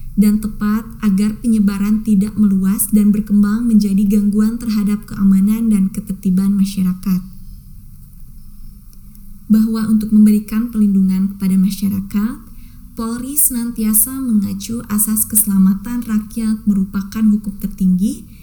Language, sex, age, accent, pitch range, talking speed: Indonesian, female, 20-39, native, 195-220 Hz, 100 wpm